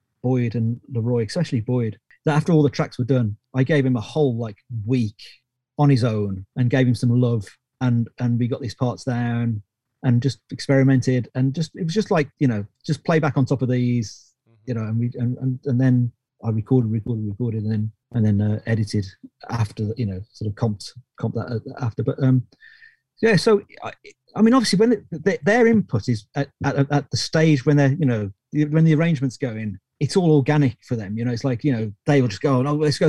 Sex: male